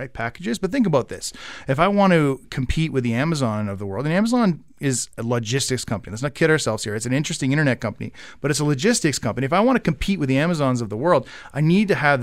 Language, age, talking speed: English, 30-49, 260 wpm